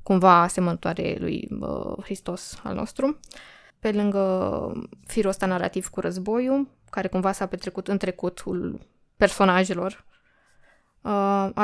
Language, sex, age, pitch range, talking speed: Romanian, female, 20-39, 180-200 Hz, 115 wpm